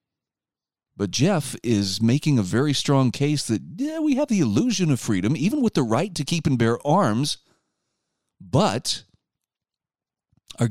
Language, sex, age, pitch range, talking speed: English, male, 40-59, 115-165 Hz, 150 wpm